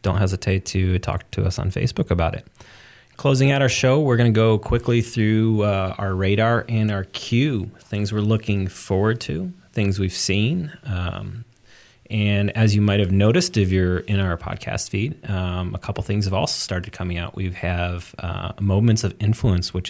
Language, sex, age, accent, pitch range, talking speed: English, male, 30-49, American, 95-115 Hz, 185 wpm